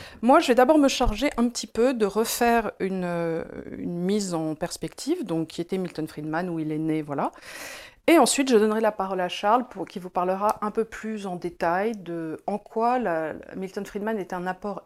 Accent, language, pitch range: French, French, 175-220 Hz